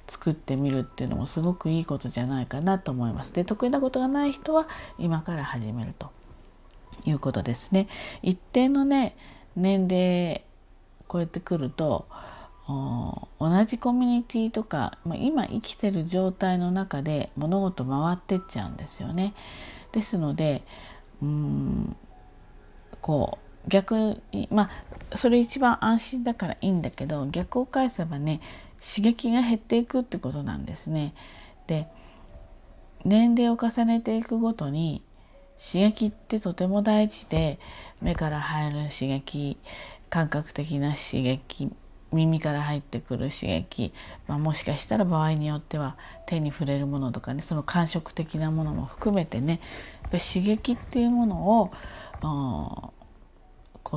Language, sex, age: Japanese, female, 40-59